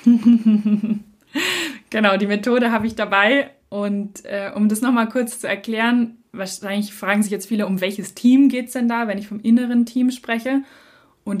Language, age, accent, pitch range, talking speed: German, 20-39, German, 190-235 Hz, 175 wpm